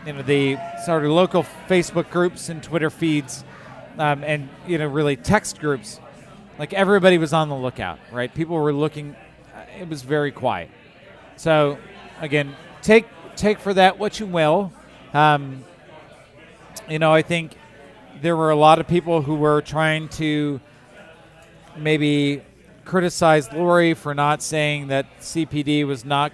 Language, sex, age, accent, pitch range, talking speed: English, male, 40-59, American, 140-165 Hz, 150 wpm